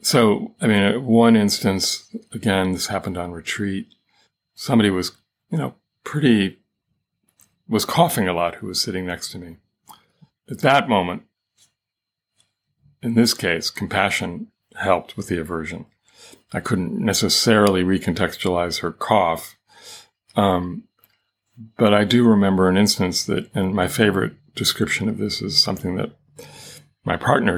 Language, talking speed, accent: English, 135 wpm, American